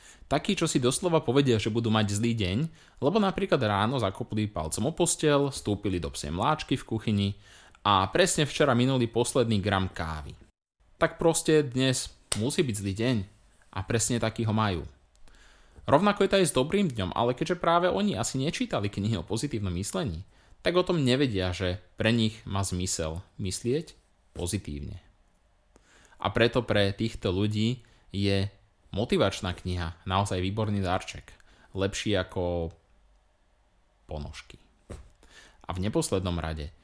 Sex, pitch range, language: male, 95-140 Hz, Slovak